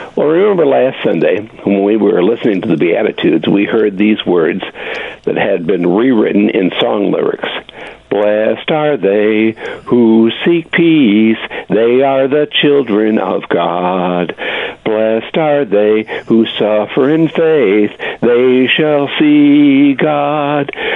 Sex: male